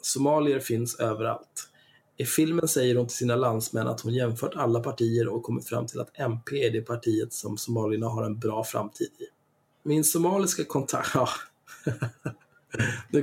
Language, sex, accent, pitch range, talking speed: Swedish, male, native, 115-140 Hz, 165 wpm